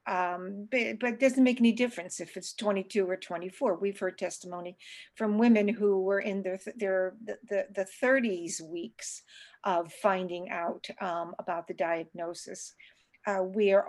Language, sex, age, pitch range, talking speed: English, female, 50-69, 185-220 Hz, 160 wpm